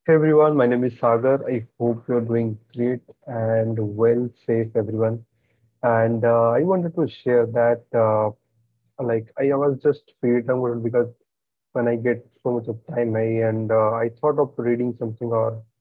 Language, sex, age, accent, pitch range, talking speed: English, male, 30-49, Indian, 115-135 Hz, 175 wpm